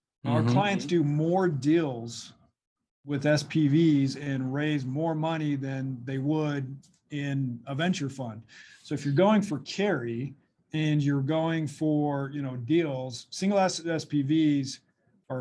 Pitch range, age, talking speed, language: 135-155 Hz, 40-59, 135 wpm, English